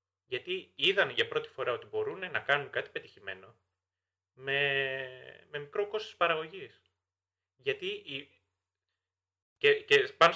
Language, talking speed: Greek, 120 wpm